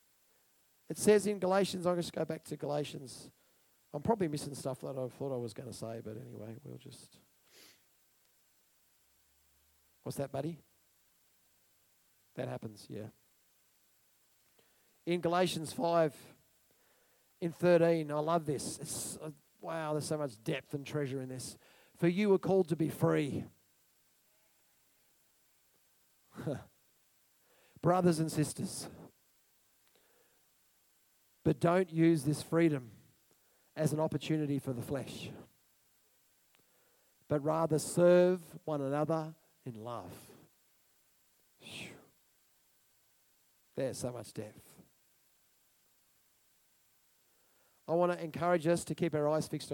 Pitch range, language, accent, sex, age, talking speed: 135-165 Hz, English, Australian, male, 40-59, 110 wpm